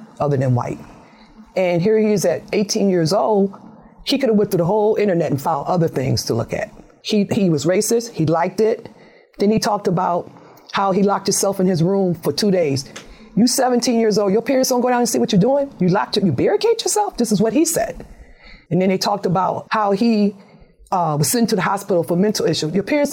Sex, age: female, 40-59